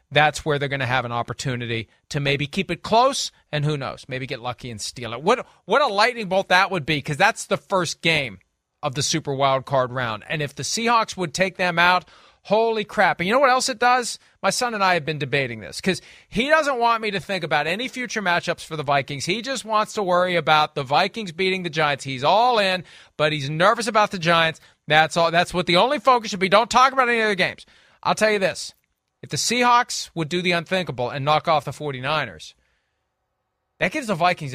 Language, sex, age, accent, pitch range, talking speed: English, male, 40-59, American, 140-195 Hz, 235 wpm